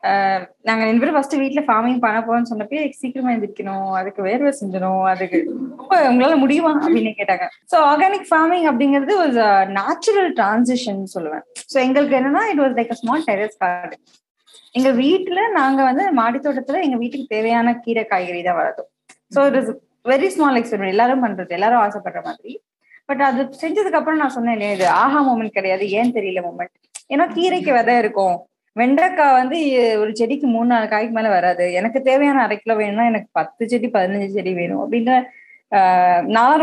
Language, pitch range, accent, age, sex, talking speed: Tamil, 210-285 Hz, native, 20-39, female, 150 wpm